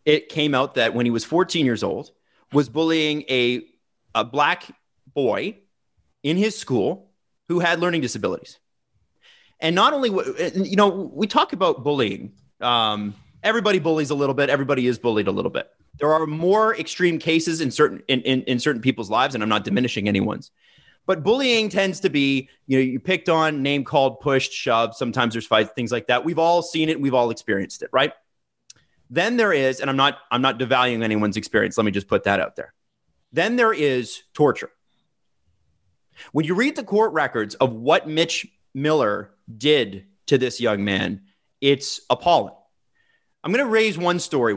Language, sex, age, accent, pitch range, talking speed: English, male, 30-49, American, 120-165 Hz, 185 wpm